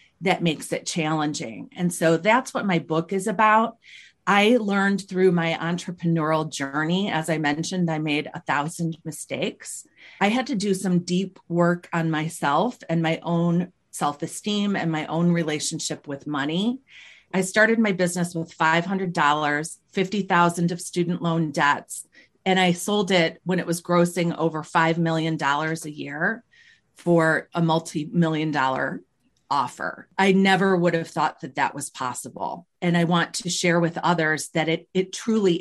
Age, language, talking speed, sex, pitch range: 40-59, English, 160 wpm, female, 160-190 Hz